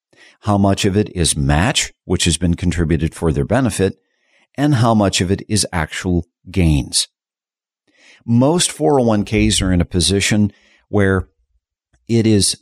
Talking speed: 145 wpm